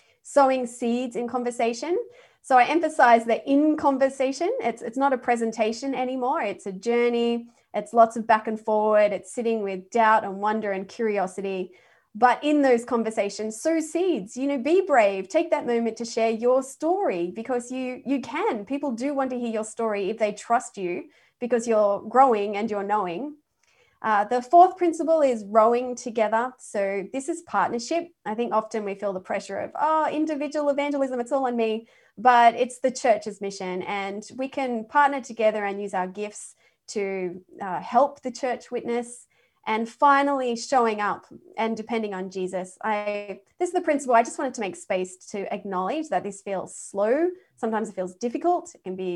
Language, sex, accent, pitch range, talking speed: English, female, Australian, 210-270 Hz, 180 wpm